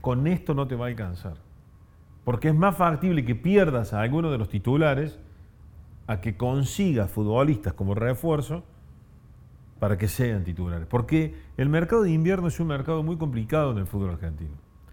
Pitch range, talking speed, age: 100-145 Hz, 170 wpm, 40-59